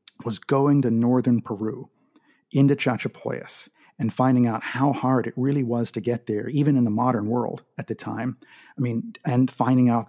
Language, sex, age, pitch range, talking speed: English, male, 50-69, 120-145 Hz, 185 wpm